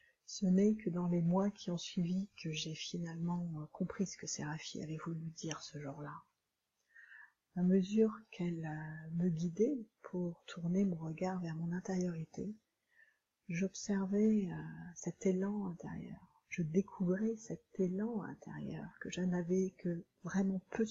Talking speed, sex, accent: 140 wpm, female, French